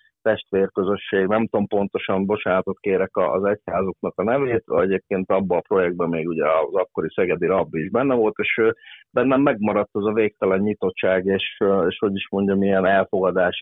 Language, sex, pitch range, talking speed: Hungarian, male, 95-105 Hz, 170 wpm